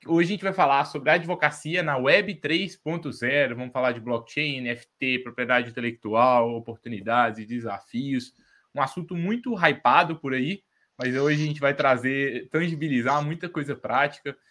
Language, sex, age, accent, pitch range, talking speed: Portuguese, male, 20-39, Brazilian, 115-140 Hz, 155 wpm